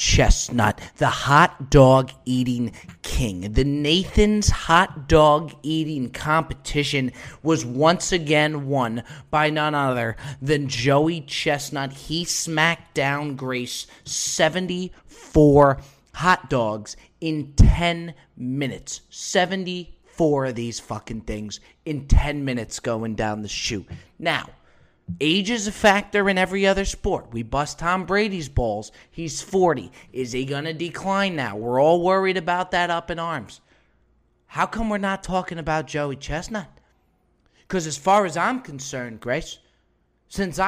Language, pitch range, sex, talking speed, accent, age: English, 135-175 Hz, male, 135 wpm, American, 30-49